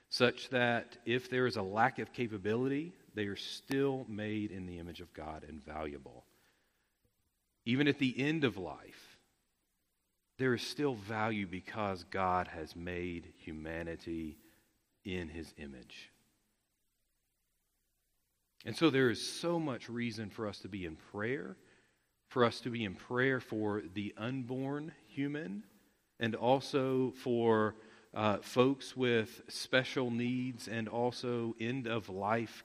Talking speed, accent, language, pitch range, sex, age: 130 wpm, American, English, 95-120 Hz, male, 40-59